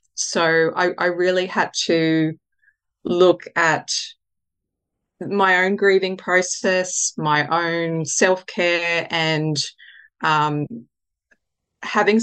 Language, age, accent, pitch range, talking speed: English, 30-49, Australian, 160-185 Hz, 90 wpm